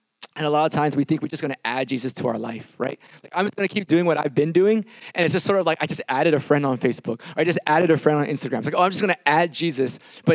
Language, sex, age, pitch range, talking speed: English, male, 20-39, 125-155 Hz, 340 wpm